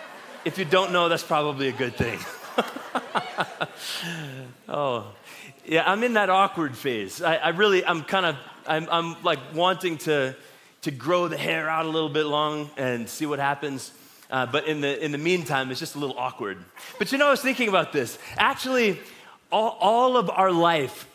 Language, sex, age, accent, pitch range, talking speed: English, male, 30-49, American, 150-195 Hz, 185 wpm